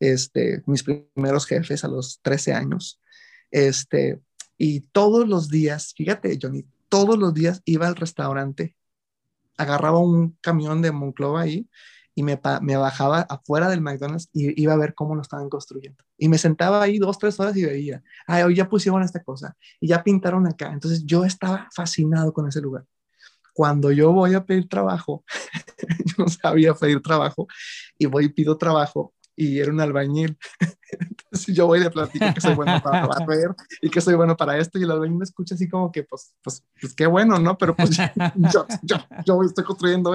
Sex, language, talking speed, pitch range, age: male, Spanish, 185 wpm, 145-180 Hz, 30-49